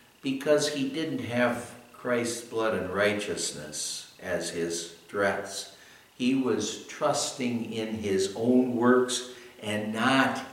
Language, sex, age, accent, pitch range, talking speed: English, male, 60-79, American, 100-145 Hz, 115 wpm